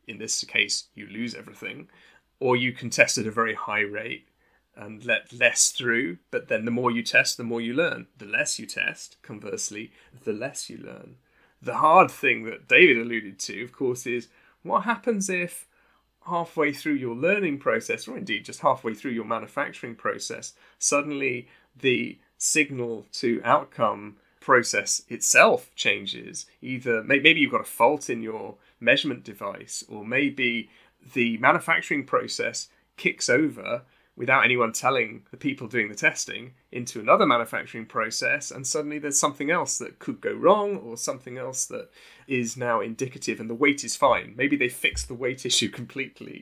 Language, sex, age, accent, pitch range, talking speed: English, male, 30-49, British, 120-160 Hz, 165 wpm